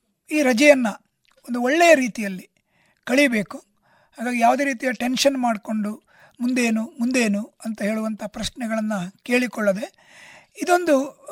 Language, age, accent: Kannada, 50-69, native